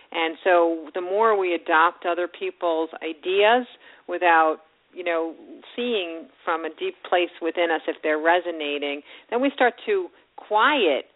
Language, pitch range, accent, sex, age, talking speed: English, 160-195 Hz, American, female, 50-69, 145 wpm